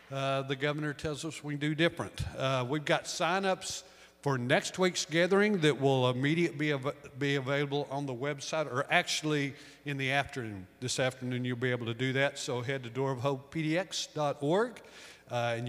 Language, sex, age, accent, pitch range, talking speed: English, male, 50-69, American, 130-160 Hz, 180 wpm